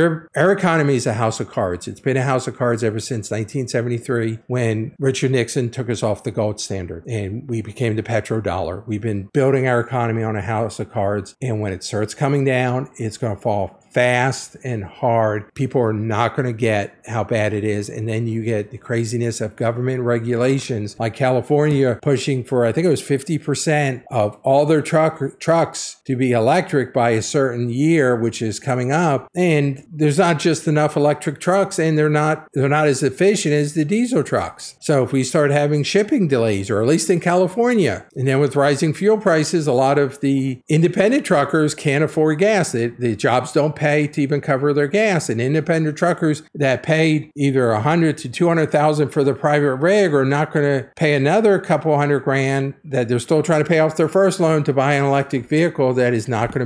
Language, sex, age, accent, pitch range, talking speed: English, male, 50-69, American, 120-155 Hz, 210 wpm